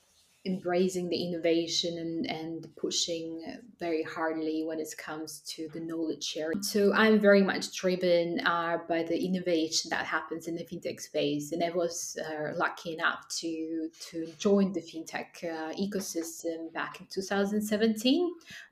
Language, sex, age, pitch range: Swedish, female, 20-39, 165-195 Hz